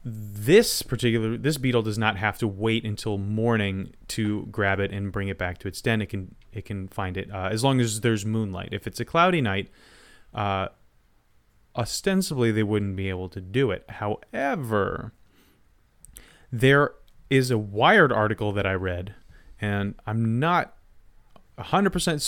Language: English